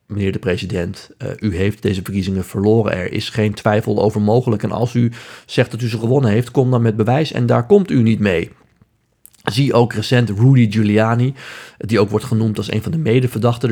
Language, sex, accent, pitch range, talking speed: Dutch, male, Dutch, 100-120 Hz, 205 wpm